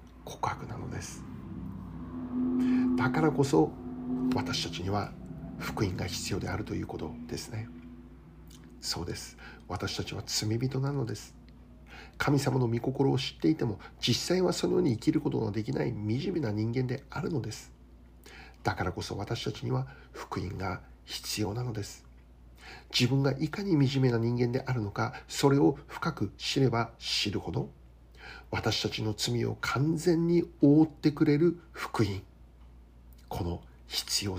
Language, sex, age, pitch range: Japanese, male, 60-79, 80-135 Hz